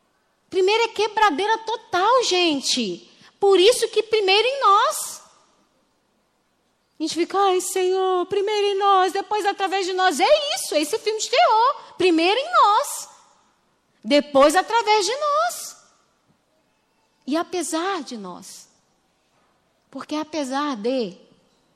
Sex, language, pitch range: female, Portuguese, 255-370 Hz